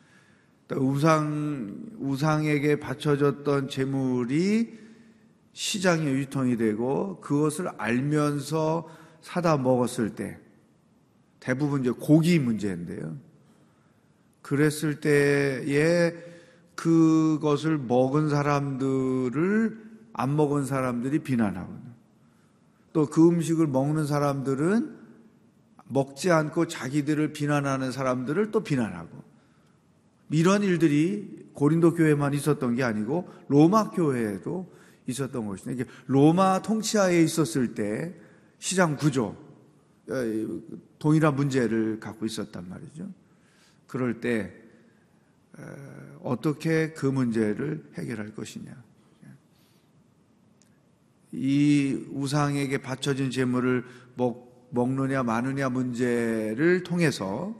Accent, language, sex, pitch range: native, Korean, male, 130-165 Hz